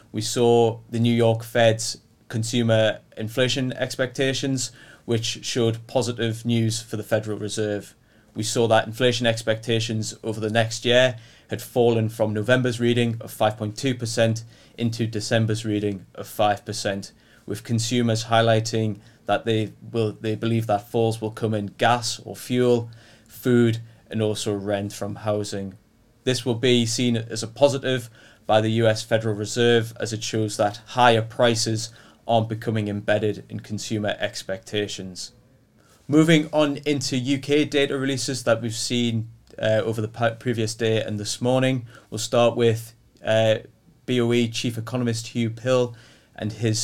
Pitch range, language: 110-120 Hz, English